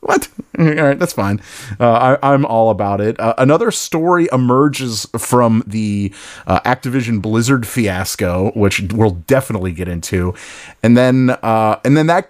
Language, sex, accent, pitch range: English, male, American, 110-140 Hz